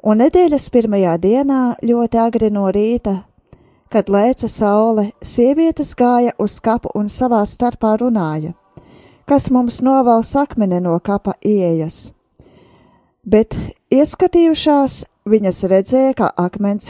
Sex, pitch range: female, 190-245 Hz